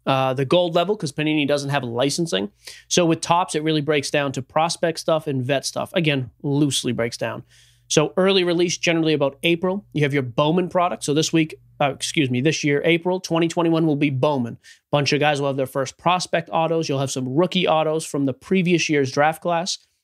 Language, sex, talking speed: English, male, 210 wpm